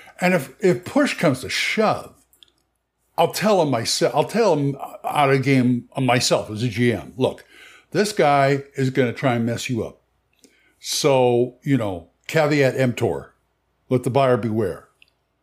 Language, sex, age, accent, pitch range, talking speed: English, male, 60-79, American, 130-170 Hz, 160 wpm